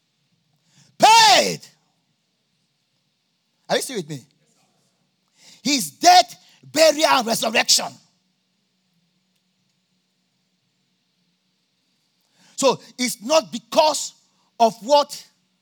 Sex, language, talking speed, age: male, English, 60 wpm, 50-69